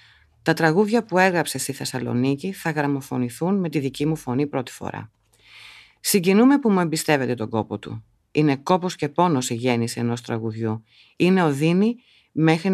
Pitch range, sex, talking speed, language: 120-160 Hz, female, 155 wpm, Greek